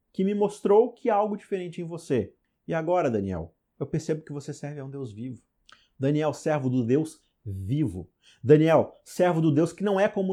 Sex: male